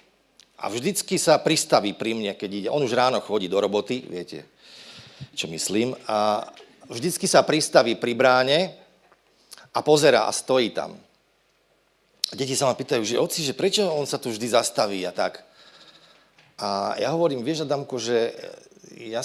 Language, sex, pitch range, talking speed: Slovak, male, 105-140 Hz, 155 wpm